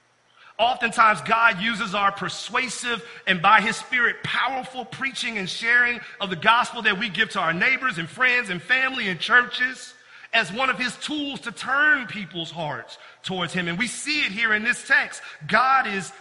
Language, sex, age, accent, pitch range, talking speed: English, male, 40-59, American, 200-260 Hz, 180 wpm